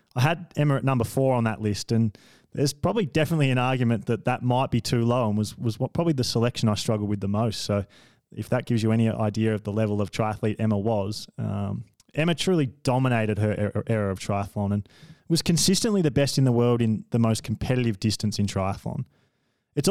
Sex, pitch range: male, 115-140 Hz